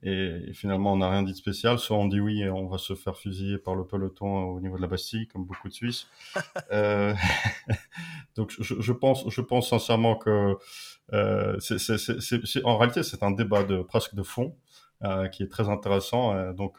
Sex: male